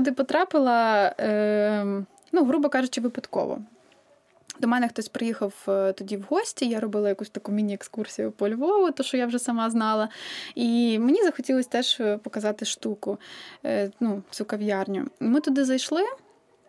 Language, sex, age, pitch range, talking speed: Ukrainian, female, 20-39, 210-270 Hz, 140 wpm